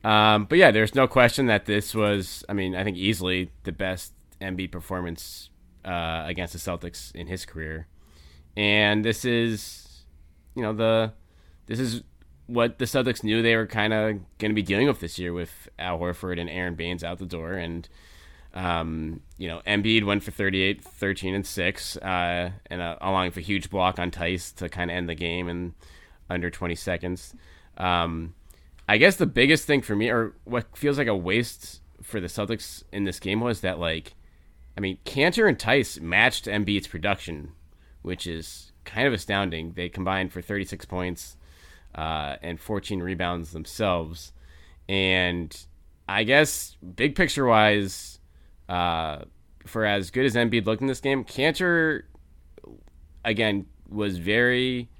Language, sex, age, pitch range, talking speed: English, male, 20-39, 80-105 Hz, 170 wpm